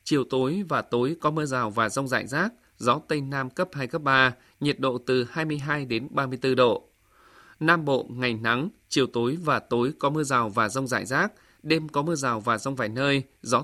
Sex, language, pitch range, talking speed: male, Vietnamese, 125-150 Hz, 215 wpm